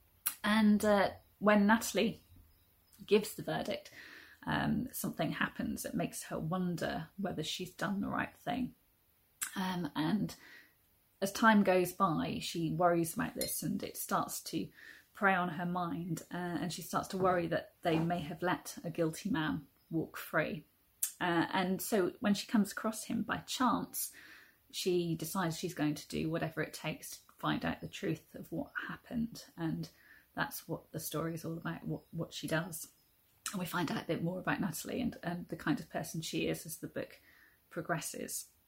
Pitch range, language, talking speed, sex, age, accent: 165-200 Hz, English, 175 wpm, female, 30-49, British